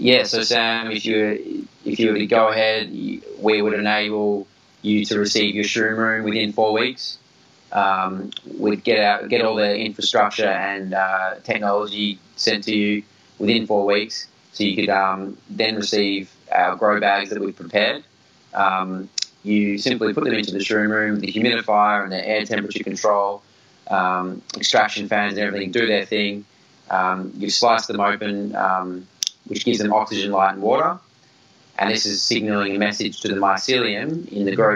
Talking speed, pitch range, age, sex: 175 wpm, 95-110 Hz, 20-39, male